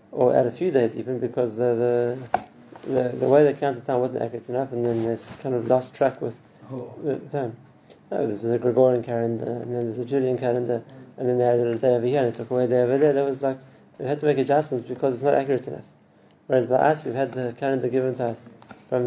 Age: 30-49